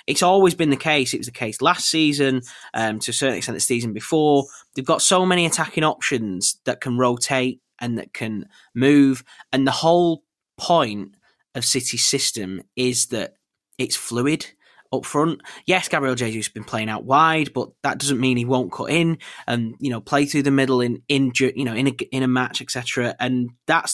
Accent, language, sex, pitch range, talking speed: British, English, male, 110-135 Hz, 200 wpm